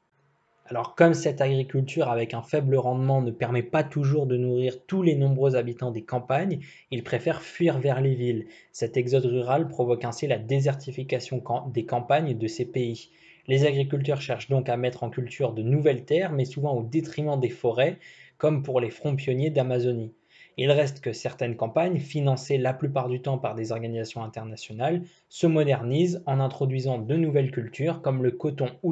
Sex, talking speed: male, 180 wpm